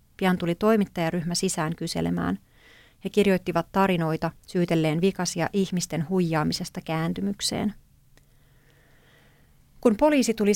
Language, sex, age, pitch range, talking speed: Finnish, female, 30-49, 170-200 Hz, 90 wpm